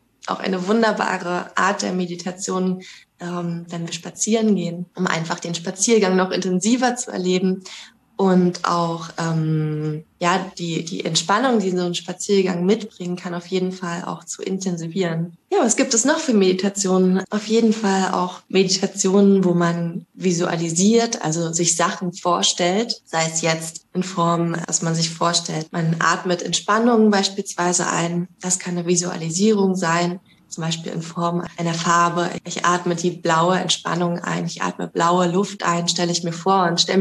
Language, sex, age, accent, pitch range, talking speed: German, female, 20-39, German, 170-195 Hz, 160 wpm